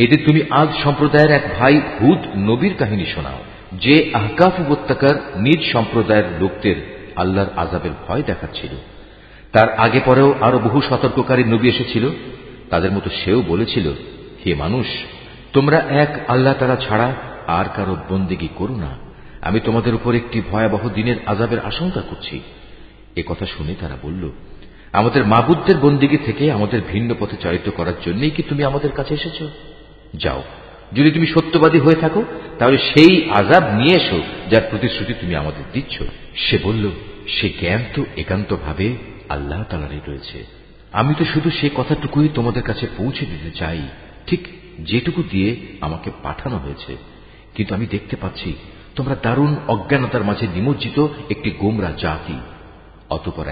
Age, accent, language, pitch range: 50-69, native, Bengali, 95-140 Hz